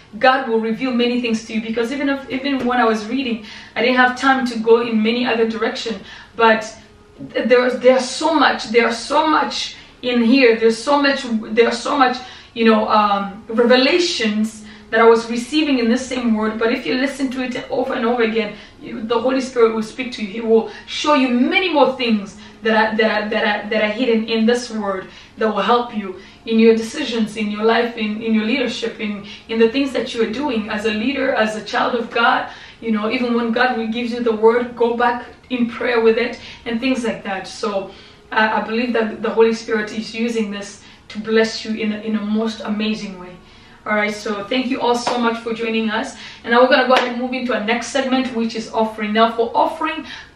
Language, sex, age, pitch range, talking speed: English, female, 20-39, 220-250 Hz, 220 wpm